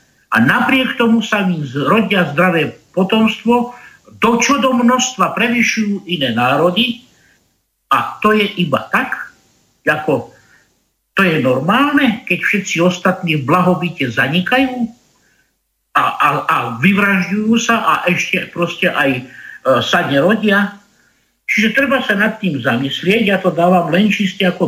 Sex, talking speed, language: male, 130 wpm, Slovak